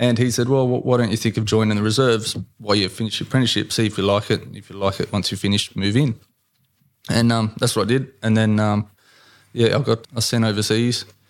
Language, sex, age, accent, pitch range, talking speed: English, male, 20-39, Australian, 105-115 Hz, 255 wpm